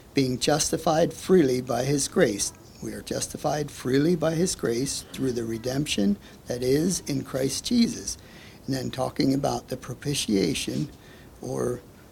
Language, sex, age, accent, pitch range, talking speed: English, male, 60-79, American, 115-145 Hz, 140 wpm